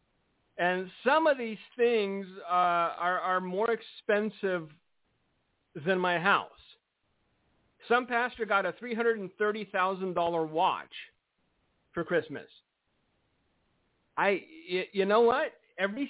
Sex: male